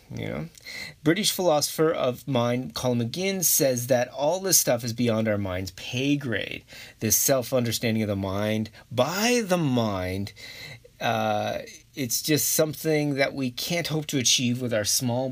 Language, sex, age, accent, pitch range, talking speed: English, male, 30-49, American, 110-150 Hz, 155 wpm